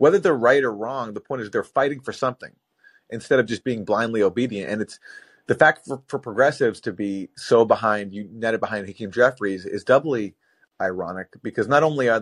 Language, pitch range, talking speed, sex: English, 105-150 Hz, 195 wpm, male